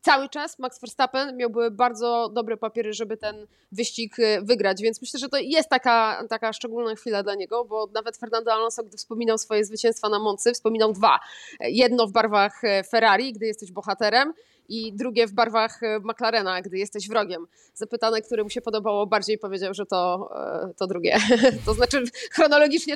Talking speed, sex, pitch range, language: 170 wpm, female, 205-245 Hz, Polish